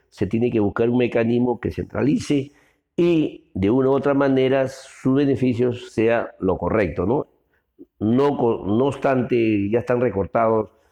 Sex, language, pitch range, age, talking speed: male, Spanish, 90-125 Hz, 50-69, 135 wpm